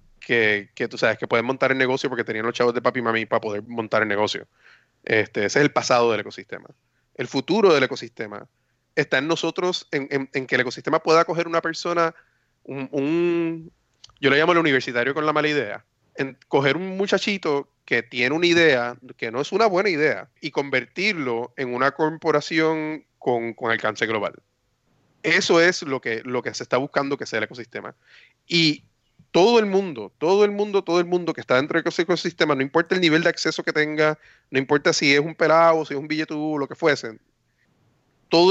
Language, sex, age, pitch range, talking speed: Spanish, male, 30-49, 125-165 Hz, 205 wpm